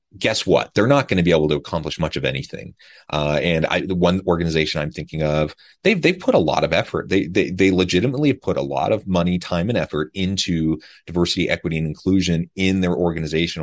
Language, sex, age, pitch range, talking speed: English, male, 30-49, 80-95 Hz, 220 wpm